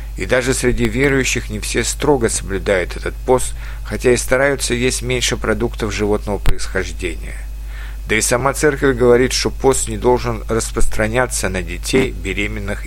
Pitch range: 95-130 Hz